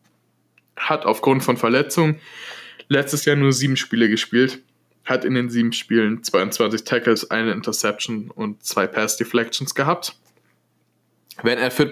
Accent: German